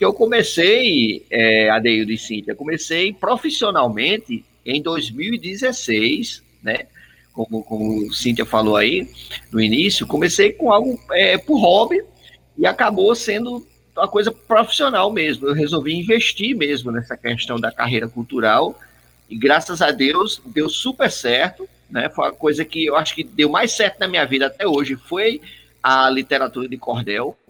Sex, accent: male, Brazilian